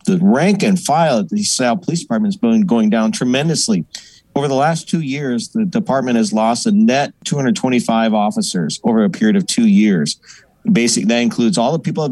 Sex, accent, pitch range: male, American, 135-215 Hz